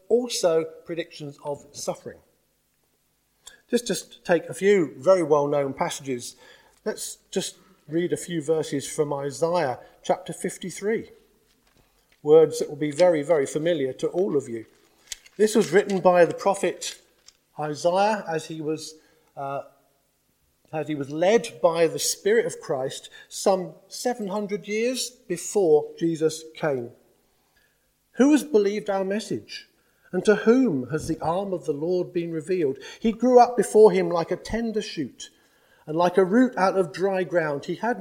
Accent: British